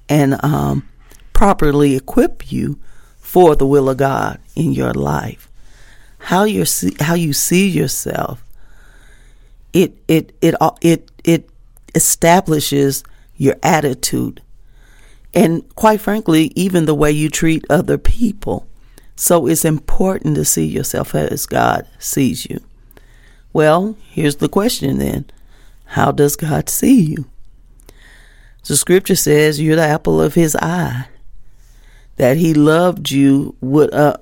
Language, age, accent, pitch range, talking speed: English, 40-59, American, 135-165 Hz, 130 wpm